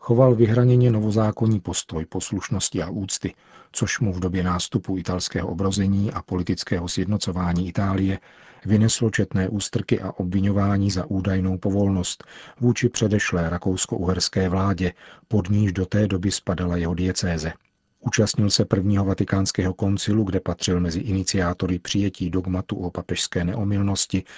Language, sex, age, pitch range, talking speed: Czech, male, 40-59, 95-105 Hz, 130 wpm